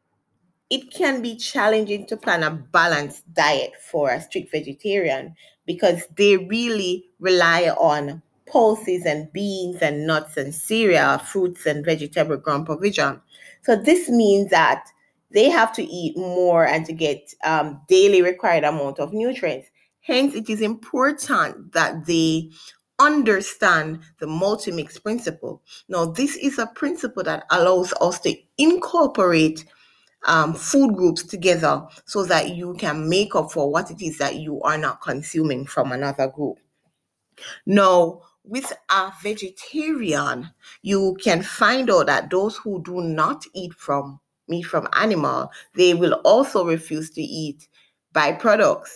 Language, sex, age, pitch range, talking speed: English, female, 30-49, 155-215 Hz, 140 wpm